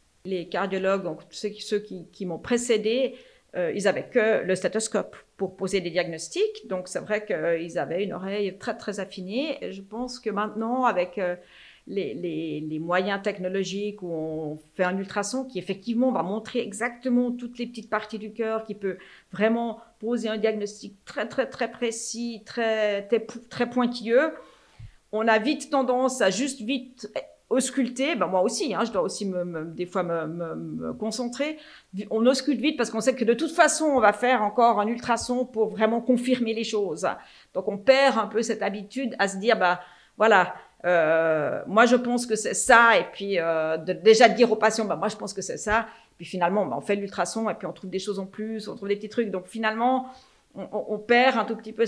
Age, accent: 40-59, French